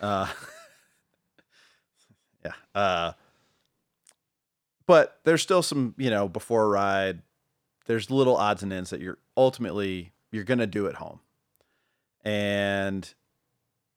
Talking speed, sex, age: 115 wpm, male, 30-49